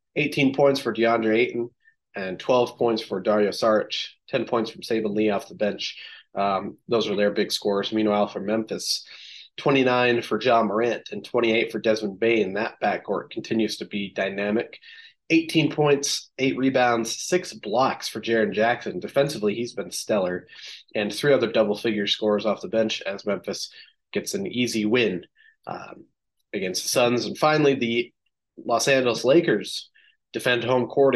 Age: 30-49